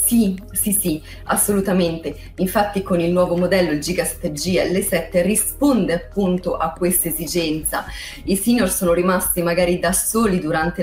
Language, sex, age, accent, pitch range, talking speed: Italian, female, 30-49, native, 165-200 Hz, 150 wpm